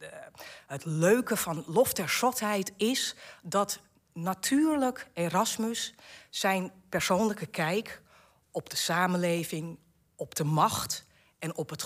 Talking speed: 115 wpm